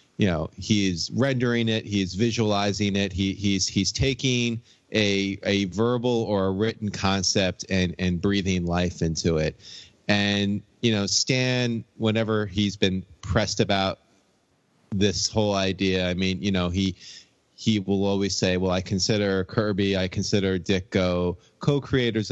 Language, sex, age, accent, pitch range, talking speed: English, male, 30-49, American, 90-110 Hz, 150 wpm